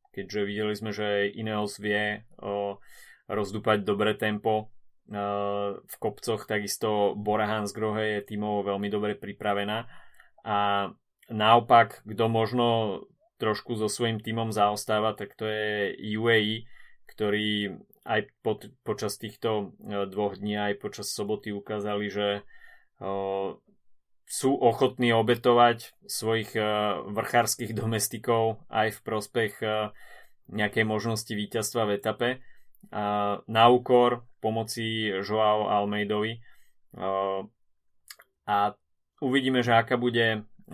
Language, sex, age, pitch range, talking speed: Slovak, male, 20-39, 100-110 Hz, 105 wpm